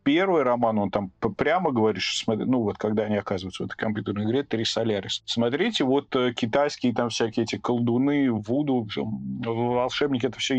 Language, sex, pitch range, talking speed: Russian, male, 110-145 Hz, 165 wpm